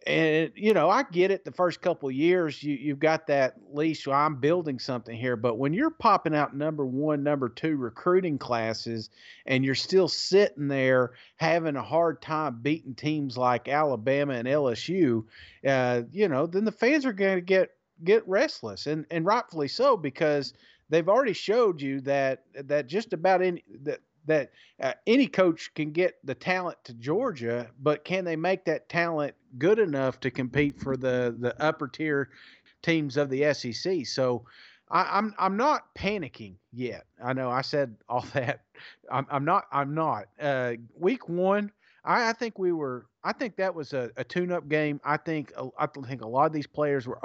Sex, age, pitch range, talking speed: male, 40-59, 130-175 Hz, 190 wpm